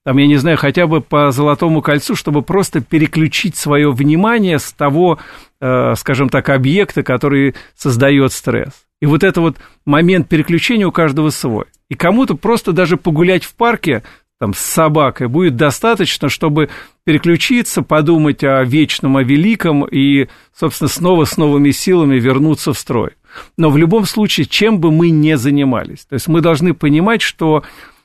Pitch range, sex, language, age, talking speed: 135-170 Hz, male, Russian, 50-69, 155 wpm